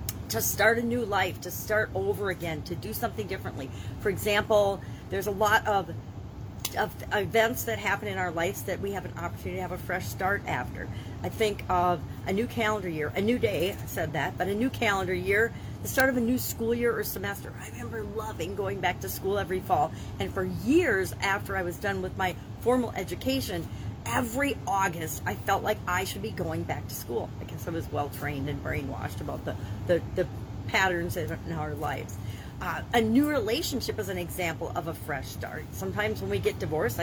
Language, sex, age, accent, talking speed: English, female, 40-59, American, 205 wpm